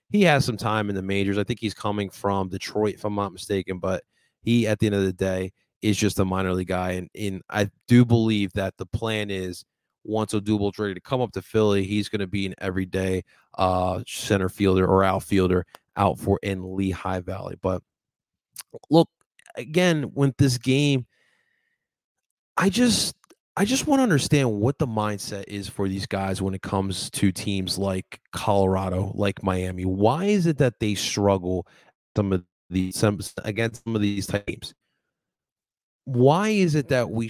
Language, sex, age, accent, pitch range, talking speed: English, male, 20-39, American, 95-120 Hz, 180 wpm